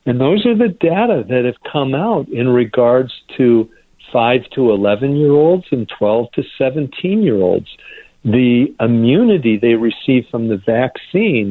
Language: English